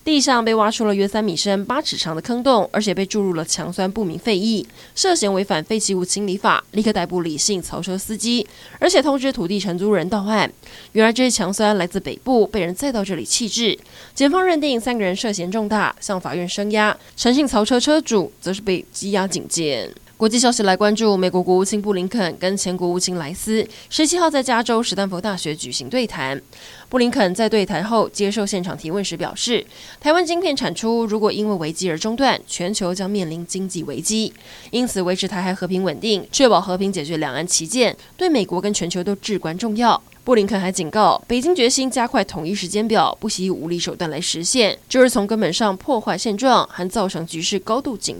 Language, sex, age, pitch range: Chinese, female, 20-39, 180-225 Hz